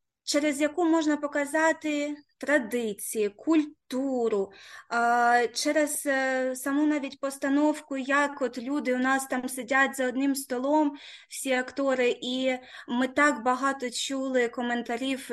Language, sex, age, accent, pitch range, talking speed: Ukrainian, female, 20-39, native, 230-275 Hz, 110 wpm